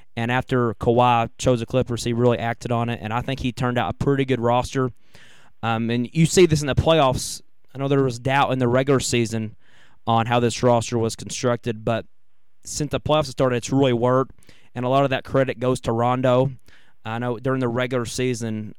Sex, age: male, 20-39